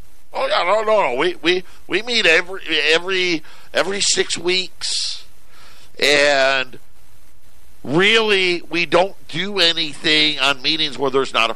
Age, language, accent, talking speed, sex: 50-69, English, American, 135 wpm, male